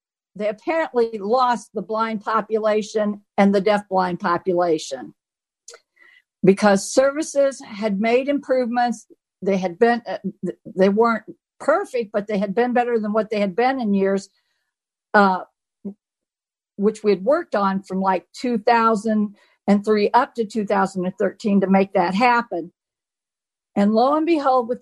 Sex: female